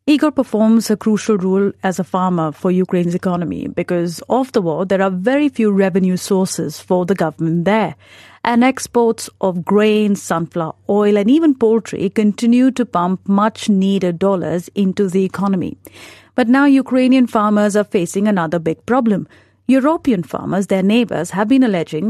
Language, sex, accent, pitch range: English, female, Indian, 185-235 Hz